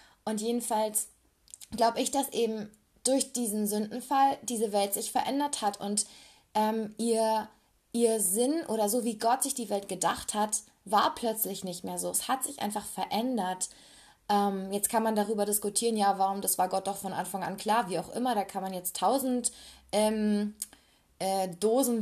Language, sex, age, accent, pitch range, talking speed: German, female, 20-39, German, 195-235 Hz, 175 wpm